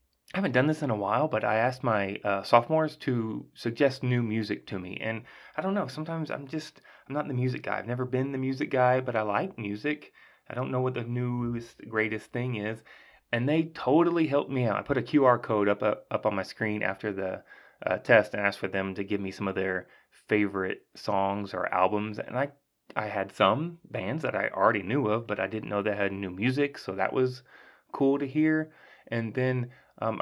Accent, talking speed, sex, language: American, 225 wpm, male, English